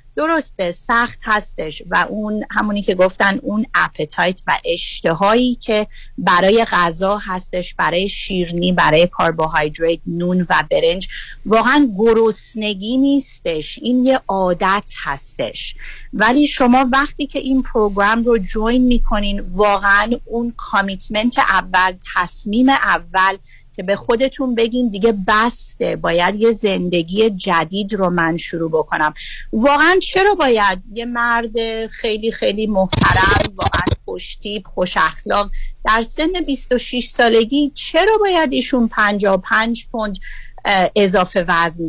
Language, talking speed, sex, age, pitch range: Persian, 115 wpm, female, 40-59, 190-255 Hz